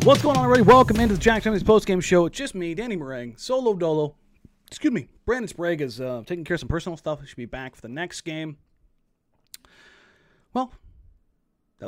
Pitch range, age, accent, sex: 155-210 Hz, 30-49, American, male